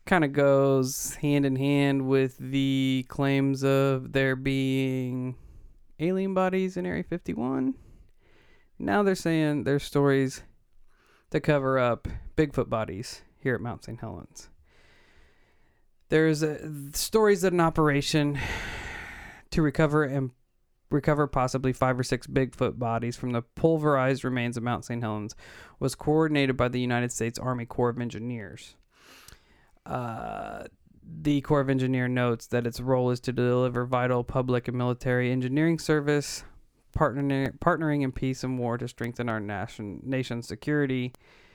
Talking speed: 135 wpm